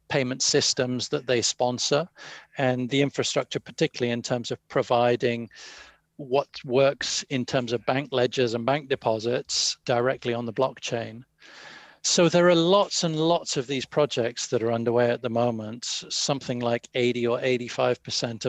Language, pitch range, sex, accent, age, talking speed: English, 120-140 Hz, male, British, 40-59, 155 wpm